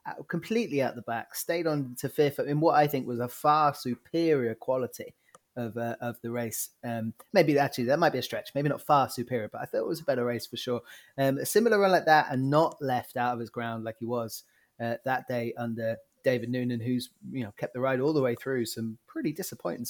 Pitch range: 115-140 Hz